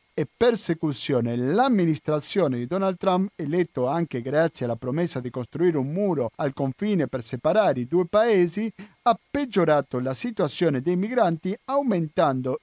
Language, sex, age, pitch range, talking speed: Italian, male, 50-69, 130-180 Hz, 140 wpm